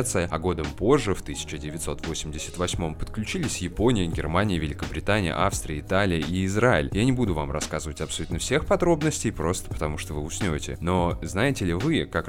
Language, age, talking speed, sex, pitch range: Russian, 20-39, 150 wpm, male, 80-100 Hz